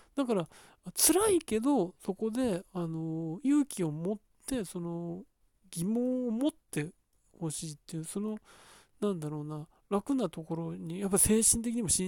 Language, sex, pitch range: Japanese, male, 165-220 Hz